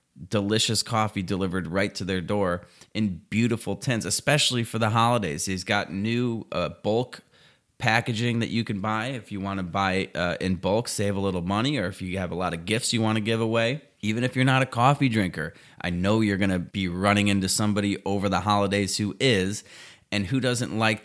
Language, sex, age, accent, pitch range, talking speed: English, male, 30-49, American, 95-115 Hz, 210 wpm